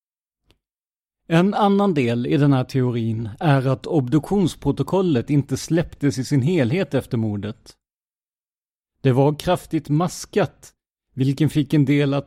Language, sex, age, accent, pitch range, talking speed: Swedish, male, 30-49, native, 125-165 Hz, 125 wpm